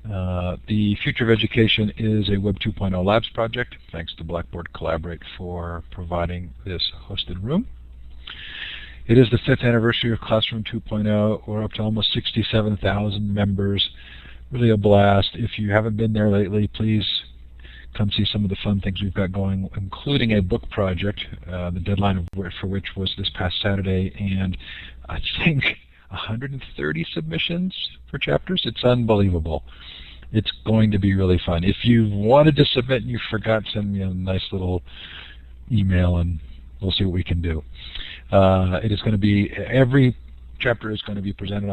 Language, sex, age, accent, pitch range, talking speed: English, male, 50-69, American, 90-110 Hz, 165 wpm